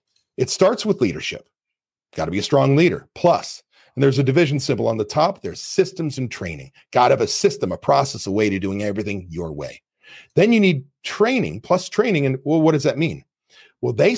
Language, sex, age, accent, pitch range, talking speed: English, male, 40-59, American, 135-180 Hz, 215 wpm